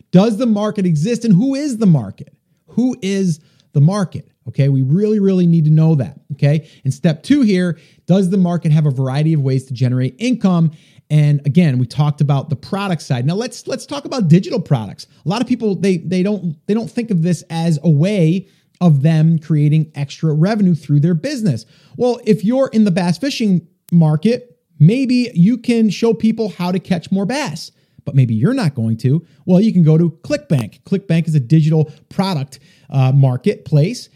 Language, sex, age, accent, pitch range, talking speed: English, male, 30-49, American, 150-200 Hz, 195 wpm